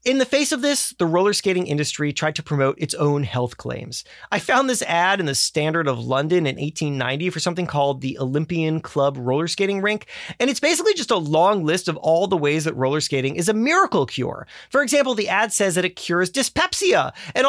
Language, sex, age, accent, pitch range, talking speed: English, male, 30-49, American, 150-245 Hz, 220 wpm